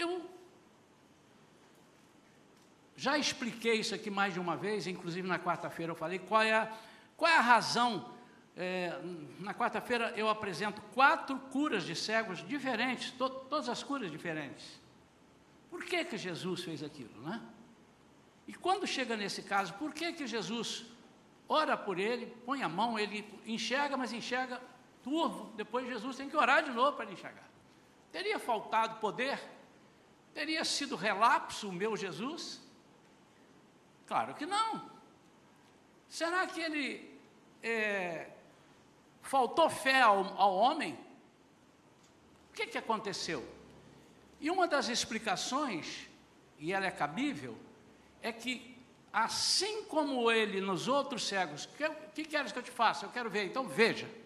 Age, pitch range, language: 60-79, 205-280 Hz, Portuguese